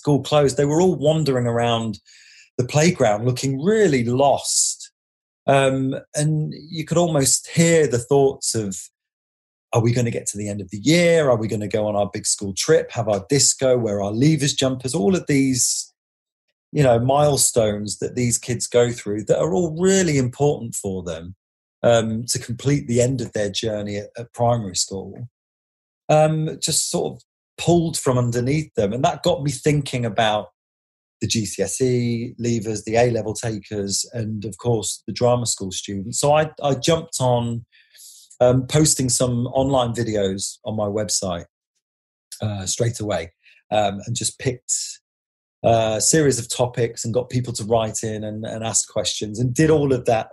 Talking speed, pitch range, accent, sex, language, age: 175 wpm, 105-135 Hz, British, male, English, 30-49